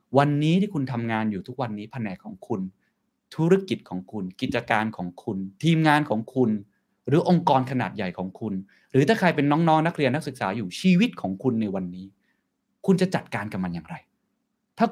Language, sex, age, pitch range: Thai, male, 20-39, 105-165 Hz